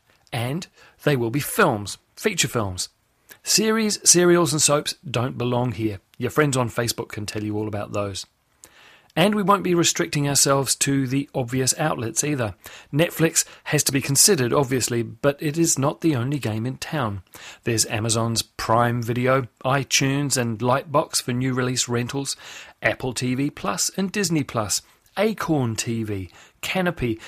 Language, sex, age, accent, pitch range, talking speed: English, male, 40-59, British, 115-155 Hz, 155 wpm